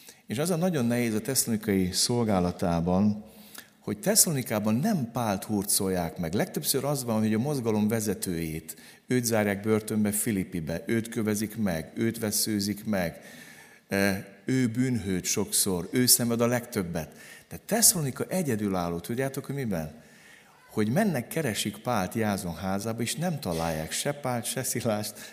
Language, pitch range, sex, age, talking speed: Hungarian, 95-130 Hz, male, 60-79, 135 wpm